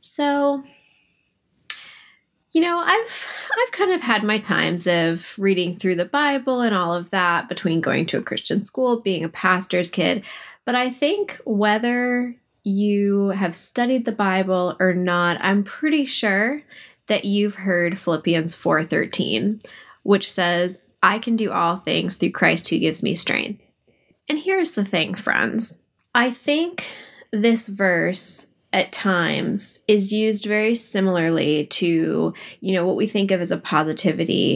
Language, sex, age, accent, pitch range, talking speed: English, female, 10-29, American, 175-230 Hz, 150 wpm